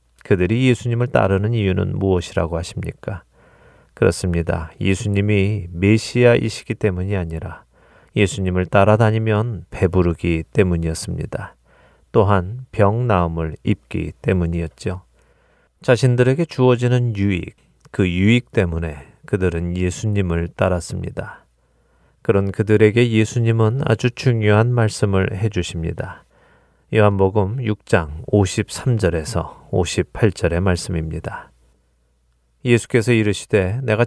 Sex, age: male, 30-49